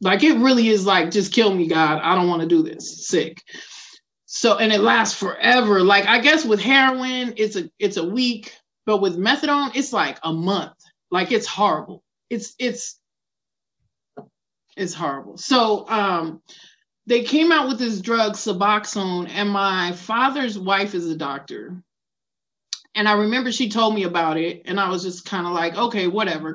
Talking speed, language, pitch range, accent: 175 wpm, English, 190-240 Hz, American